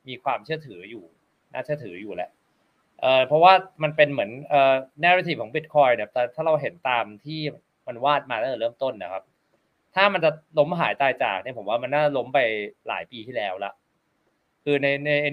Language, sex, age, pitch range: Thai, male, 20-39, 120-150 Hz